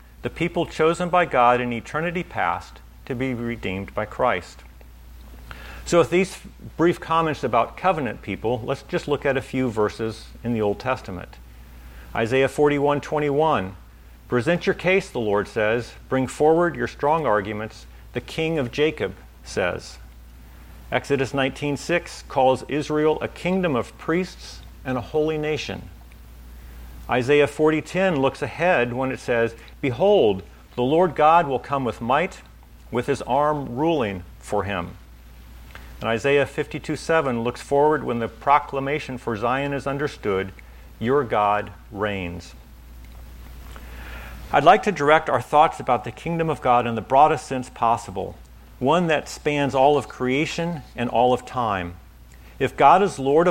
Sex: male